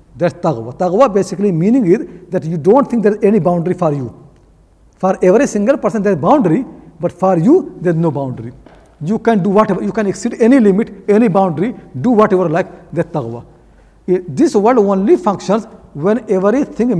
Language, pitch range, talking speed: English, 155-205 Hz, 175 wpm